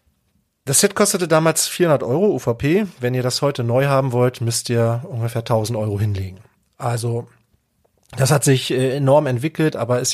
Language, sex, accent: German, male, German